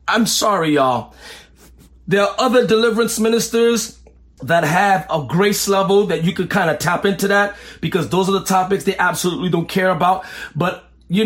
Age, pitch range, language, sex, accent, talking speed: 40-59, 180-240 Hz, English, male, American, 175 wpm